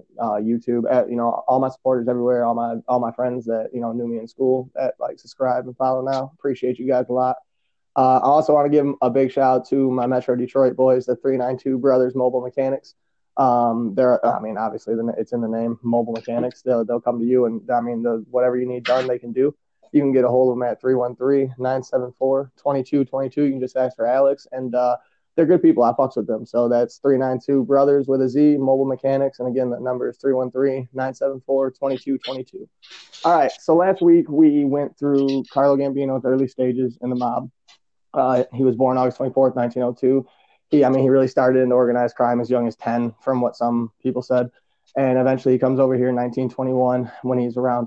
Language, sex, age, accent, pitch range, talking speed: English, male, 20-39, American, 120-135 Hz, 210 wpm